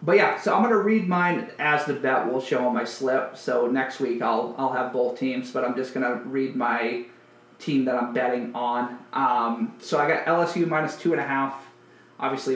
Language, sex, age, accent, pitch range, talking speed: English, male, 30-49, American, 125-145 Hz, 215 wpm